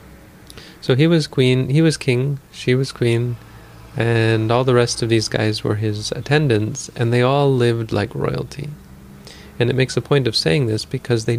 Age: 30-49